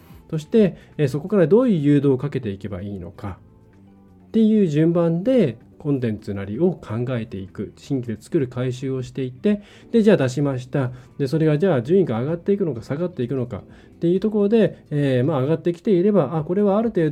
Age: 20-39